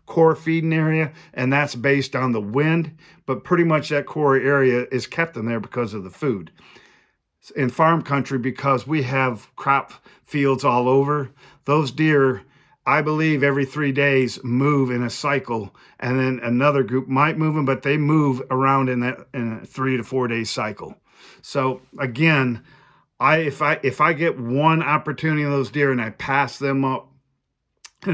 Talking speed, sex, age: 175 wpm, male, 50-69